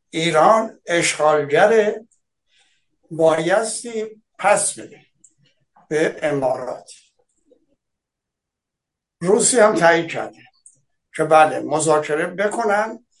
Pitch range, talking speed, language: 165-210 Hz, 70 wpm, Persian